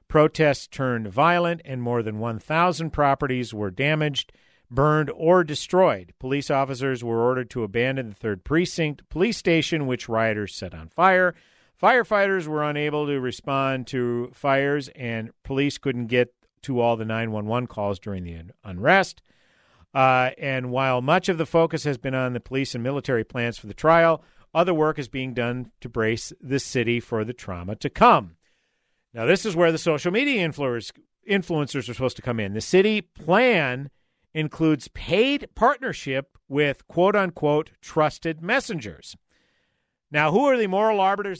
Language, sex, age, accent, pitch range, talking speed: English, male, 50-69, American, 125-165 Hz, 160 wpm